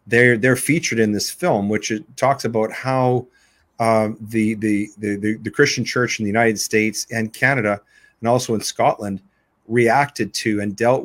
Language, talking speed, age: English, 175 wpm, 40-59